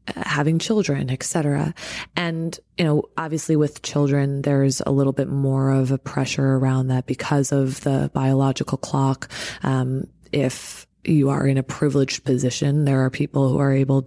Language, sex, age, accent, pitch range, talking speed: English, female, 20-39, American, 135-155 Hz, 165 wpm